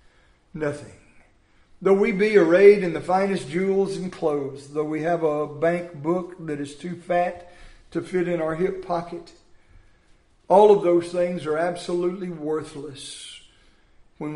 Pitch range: 160-210 Hz